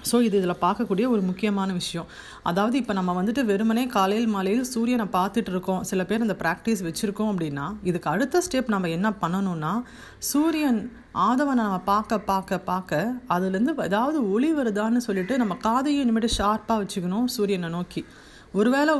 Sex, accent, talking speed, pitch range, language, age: female, native, 150 wpm, 190-240 Hz, Tamil, 30-49